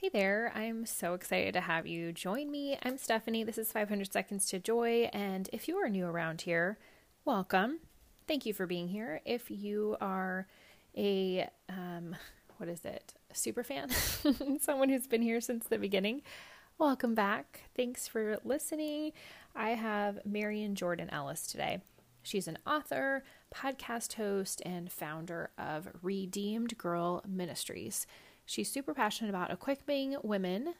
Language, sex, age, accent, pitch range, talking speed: English, female, 20-39, American, 180-235 Hz, 150 wpm